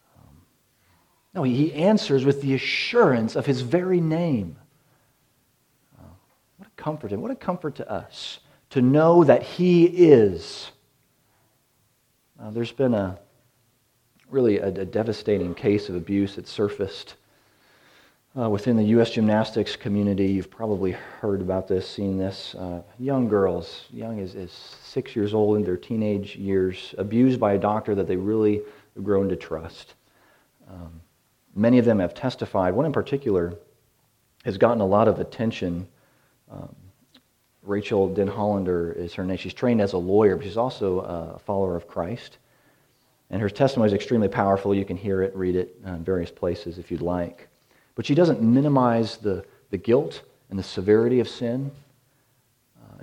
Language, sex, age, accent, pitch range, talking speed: English, male, 40-59, American, 95-130 Hz, 160 wpm